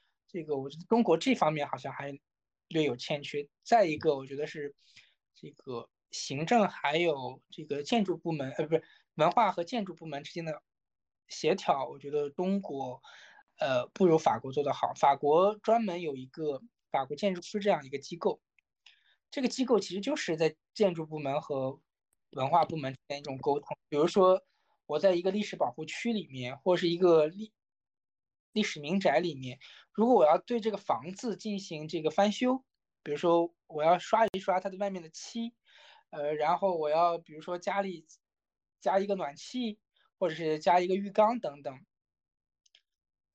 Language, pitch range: Chinese, 155-210 Hz